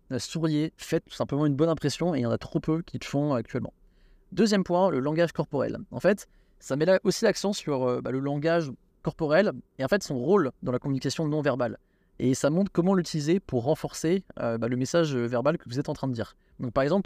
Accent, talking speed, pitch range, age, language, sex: French, 240 wpm, 130-175 Hz, 20-39, French, male